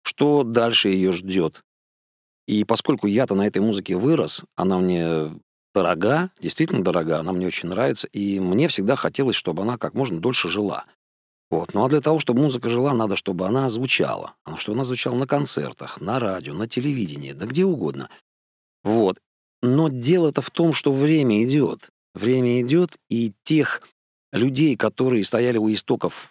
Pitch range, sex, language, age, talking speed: 95-130 Hz, male, Russian, 40-59, 160 wpm